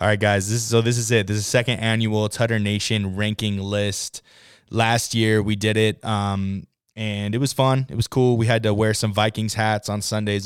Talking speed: 220 wpm